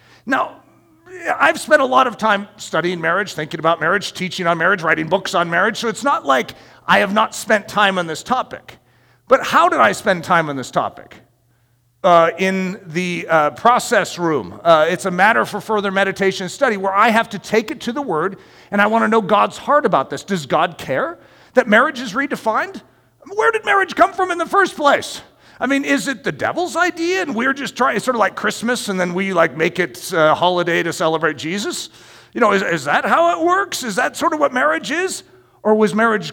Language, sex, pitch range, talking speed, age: English, male, 175-270 Hz, 220 wpm, 40-59